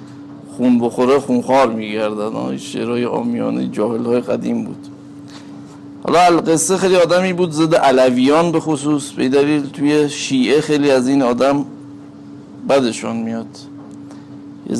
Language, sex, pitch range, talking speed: Persian, male, 120-145 Hz, 120 wpm